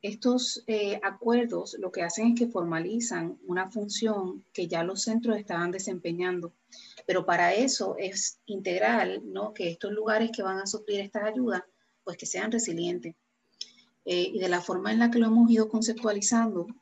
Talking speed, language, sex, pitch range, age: 170 wpm, Spanish, female, 175-220 Hz, 30-49